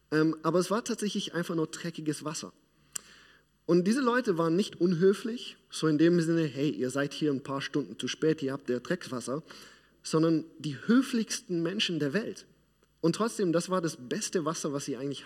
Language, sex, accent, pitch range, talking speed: German, male, German, 145-180 Hz, 185 wpm